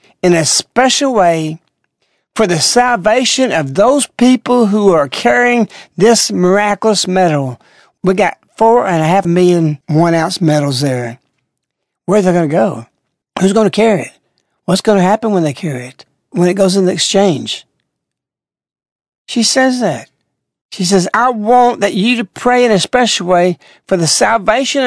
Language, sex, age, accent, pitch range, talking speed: English, male, 60-79, American, 165-225 Hz, 165 wpm